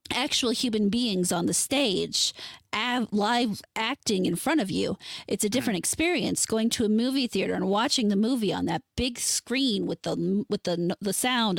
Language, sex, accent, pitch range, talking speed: English, female, American, 190-235 Hz, 180 wpm